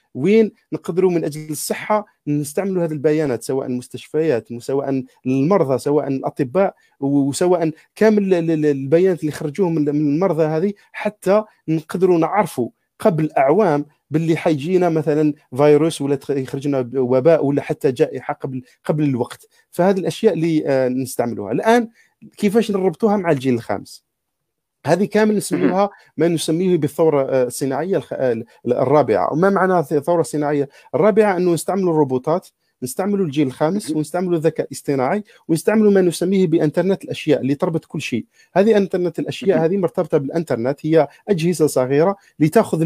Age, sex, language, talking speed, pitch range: 40-59, male, Arabic, 125 wpm, 145-190 Hz